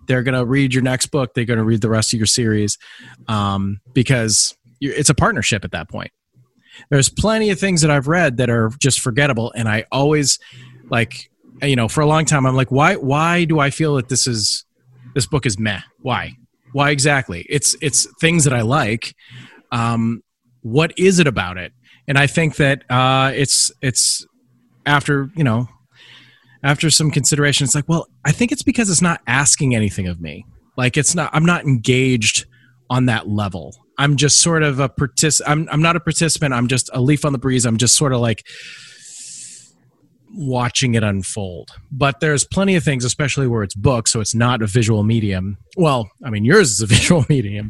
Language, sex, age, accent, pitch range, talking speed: English, male, 30-49, American, 110-145 Hz, 200 wpm